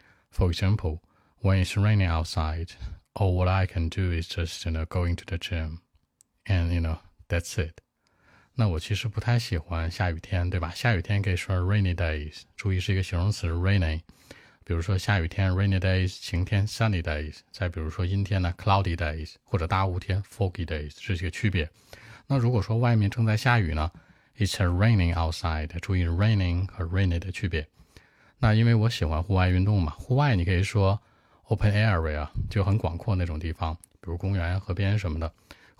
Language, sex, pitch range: Chinese, male, 85-105 Hz